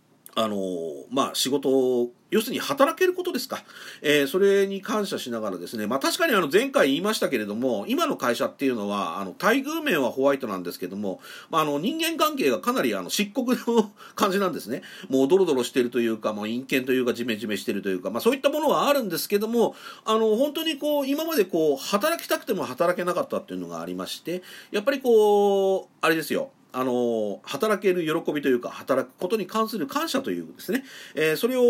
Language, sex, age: Japanese, male, 40-59